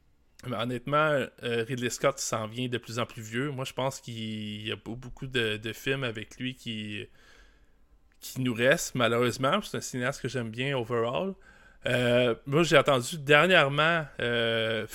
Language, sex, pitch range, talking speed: French, male, 115-145 Hz, 165 wpm